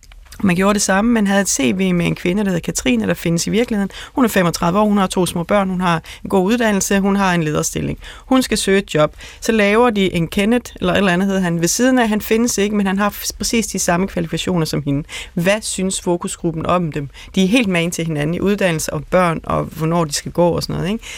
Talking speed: 265 wpm